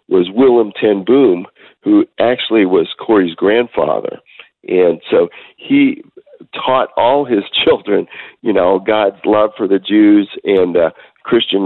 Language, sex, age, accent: English, male, 50-69, American